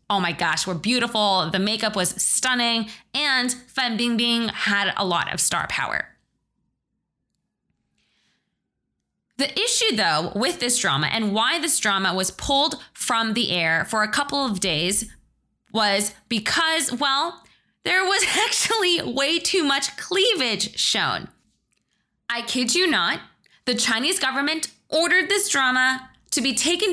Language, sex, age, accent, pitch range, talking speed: English, female, 20-39, American, 215-295 Hz, 140 wpm